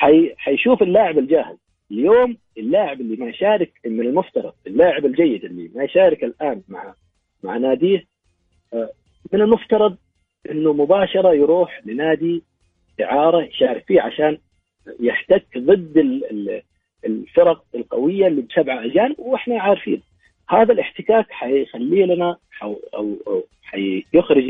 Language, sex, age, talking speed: English, male, 40-59, 110 wpm